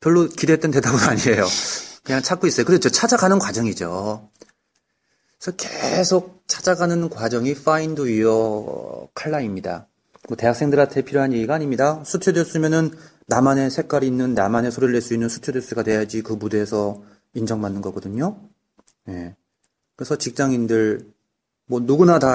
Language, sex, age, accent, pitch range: Korean, male, 30-49, native, 110-140 Hz